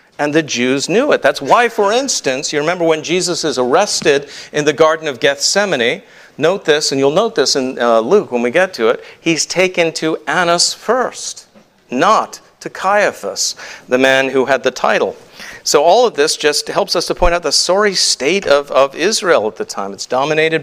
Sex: male